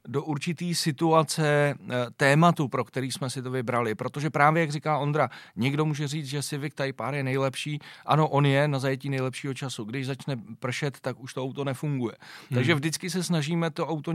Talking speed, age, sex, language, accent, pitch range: 190 wpm, 40-59, male, Czech, native, 130-150 Hz